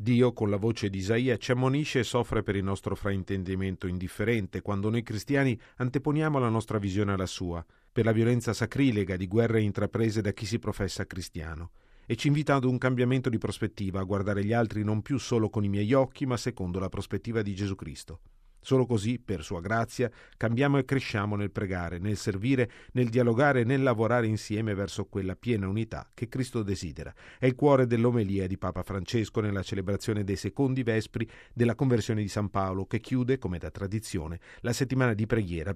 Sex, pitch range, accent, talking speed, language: male, 100-125 Hz, native, 190 wpm, Italian